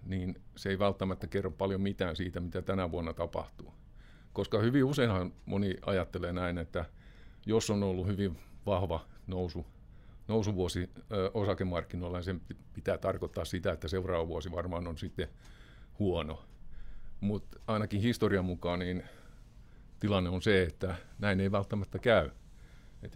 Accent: native